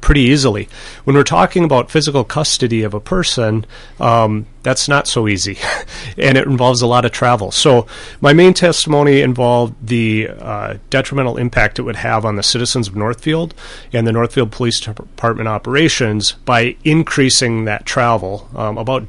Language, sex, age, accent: English, male, 30-49, American